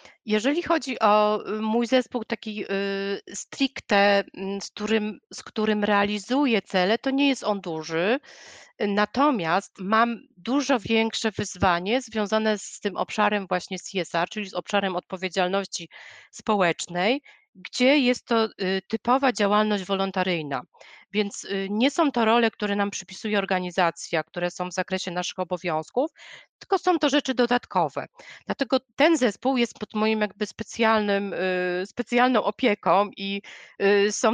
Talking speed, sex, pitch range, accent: 125 wpm, female, 200-250 Hz, native